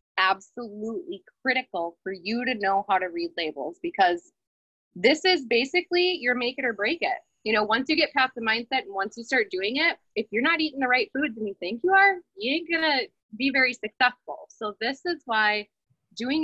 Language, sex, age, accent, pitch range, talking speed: English, female, 20-39, American, 200-260 Hz, 210 wpm